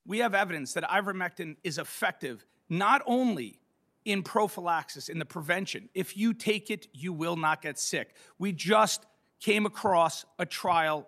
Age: 40-59